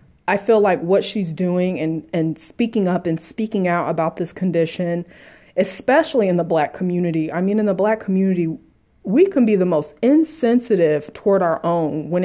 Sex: female